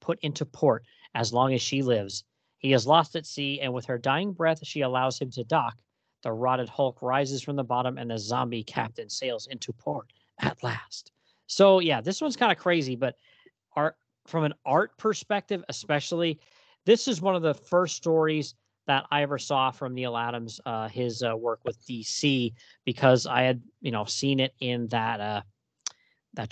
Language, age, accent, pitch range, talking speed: English, 40-59, American, 120-160 Hz, 190 wpm